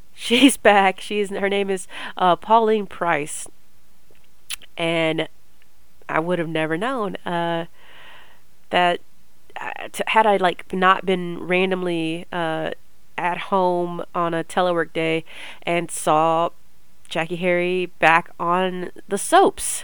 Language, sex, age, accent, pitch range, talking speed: English, female, 30-49, American, 170-210 Hz, 120 wpm